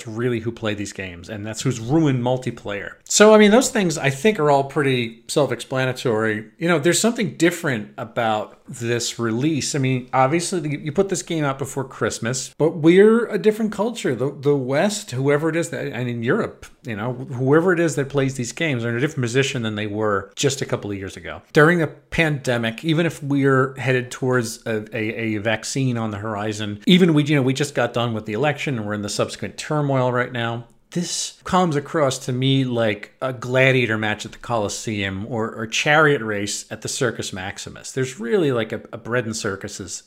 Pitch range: 110-150 Hz